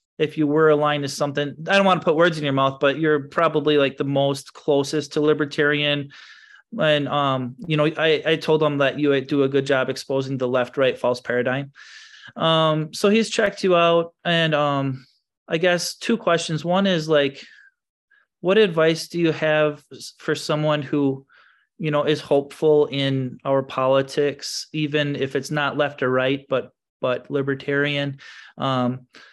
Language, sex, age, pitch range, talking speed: English, male, 30-49, 140-160 Hz, 175 wpm